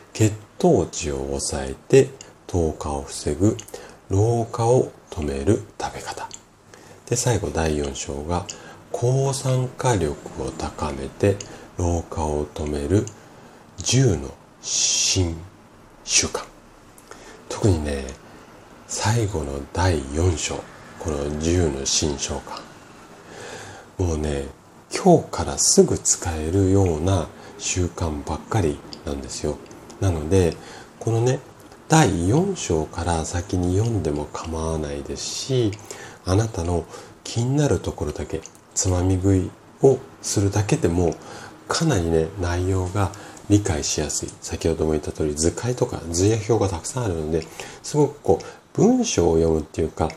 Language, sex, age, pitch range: Japanese, male, 40-59, 80-105 Hz